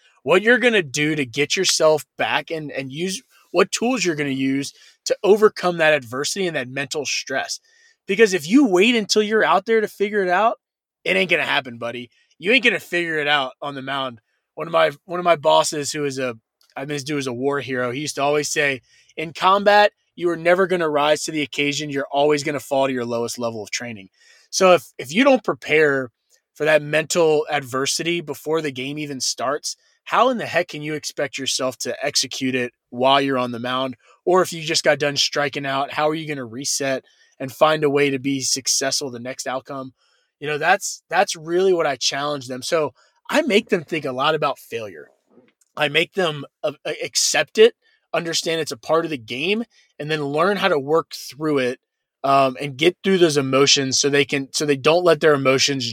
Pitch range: 135-170 Hz